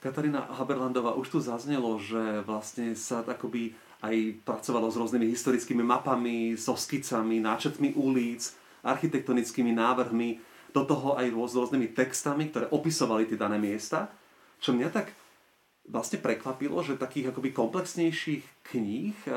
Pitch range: 120-155 Hz